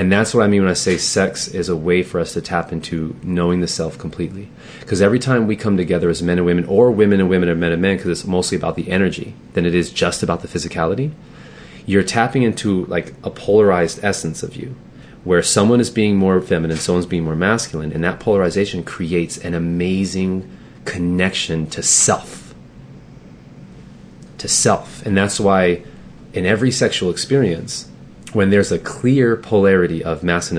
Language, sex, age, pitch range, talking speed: English, male, 30-49, 85-100 Hz, 190 wpm